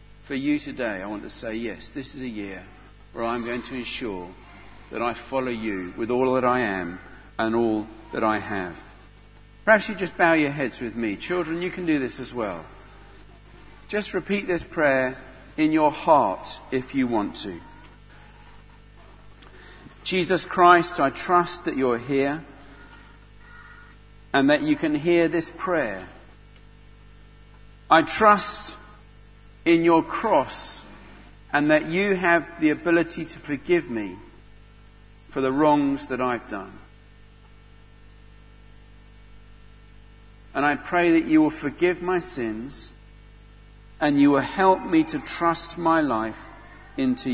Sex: male